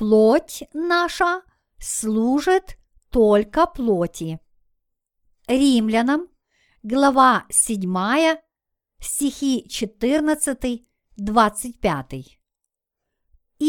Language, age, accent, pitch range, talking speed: Russian, 50-69, native, 215-290 Hz, 45 wpm